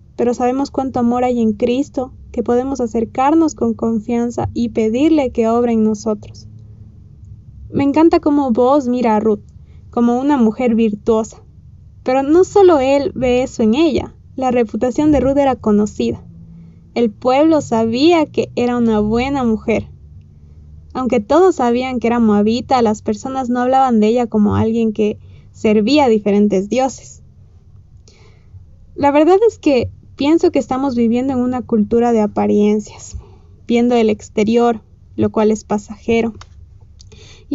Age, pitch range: 20-39, 210-265 Hz